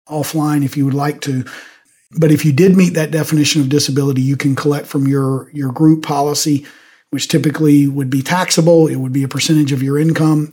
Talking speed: 205 wpm